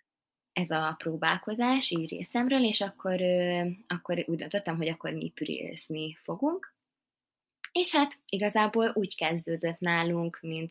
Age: 20-39